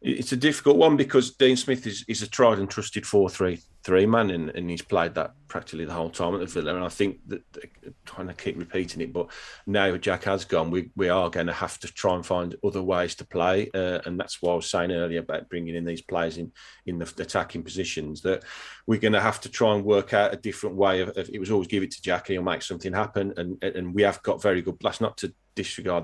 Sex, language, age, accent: male, English, 30-49, British